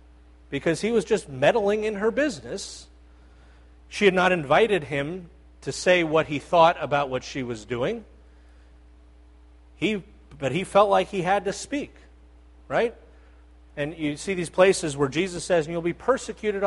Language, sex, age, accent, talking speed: English, male, 40-59, American, 160 wpm